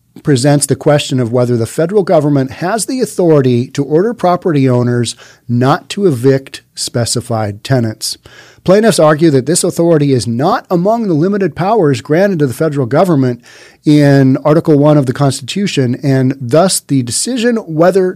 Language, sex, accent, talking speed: English, male, American, 155 wpm